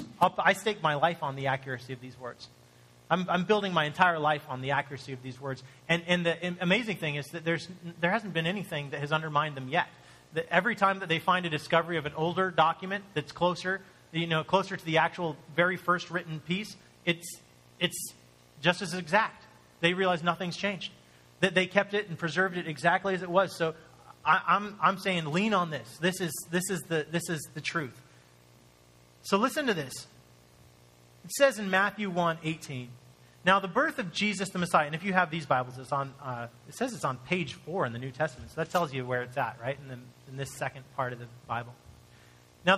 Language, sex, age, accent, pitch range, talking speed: English, male, 30-49, American, 130-185 Hz, 215 wpm